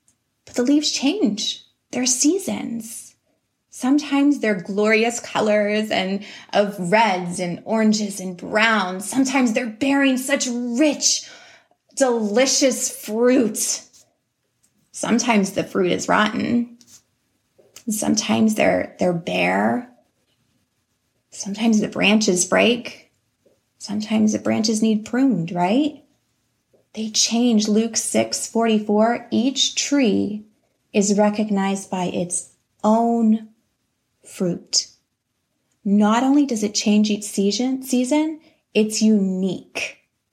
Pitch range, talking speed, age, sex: 210-255 Hz, 95 wpm, 20-39, female